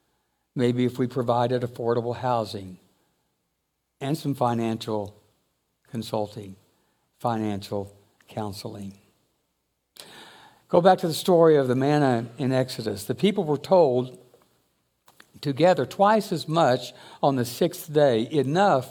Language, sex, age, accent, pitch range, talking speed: English, male, 60-79, American, 115-145 Hz, 115 wpm